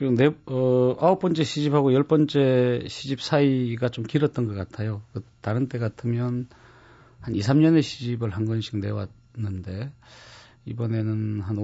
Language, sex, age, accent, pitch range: Korean, male, 40-59, native, 110-140 Hz